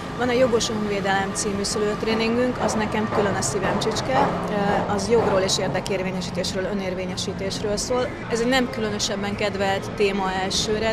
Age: 30-49